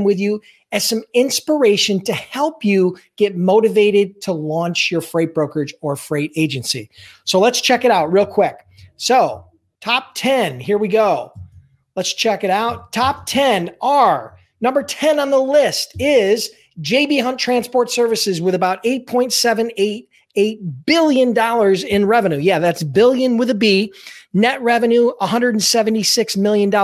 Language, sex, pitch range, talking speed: English, male, 185-235 Hz, 145 wpm